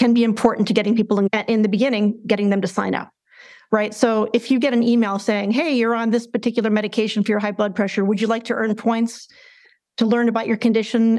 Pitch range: 210-240 Hz